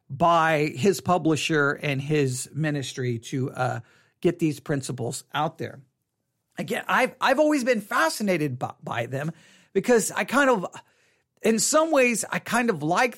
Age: 40-59